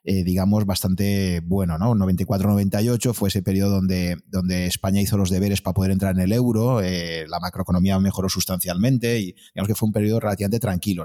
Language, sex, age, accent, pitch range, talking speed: Spanish, male, 30-49, Spanish, 100-130 Hz, 185 wpm